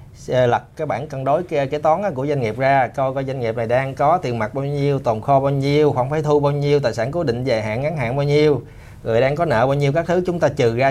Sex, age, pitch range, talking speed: male, 20-39, 120-160 Hz, 295 wpm